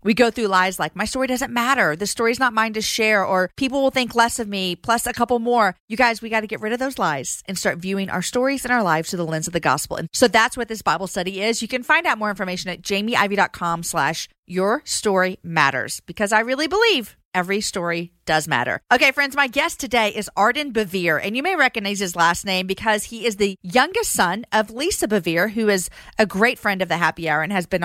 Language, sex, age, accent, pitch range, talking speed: English, female, 40-59, American, 175-230 Hz, 250 wpm